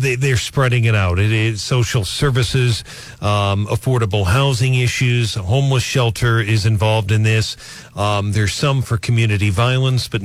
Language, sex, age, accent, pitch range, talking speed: English, male, 50-69, American, 110-130 Hz, 145 wpm